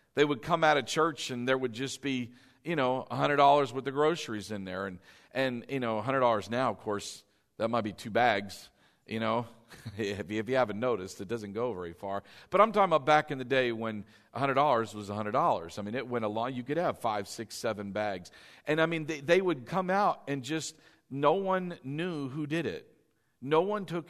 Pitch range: 115-160 Hz